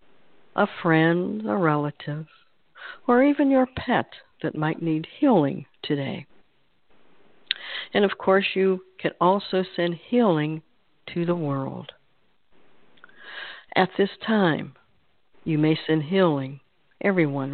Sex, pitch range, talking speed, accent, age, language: female, 155-235 Hz, 110 wpm, American, 60-79, English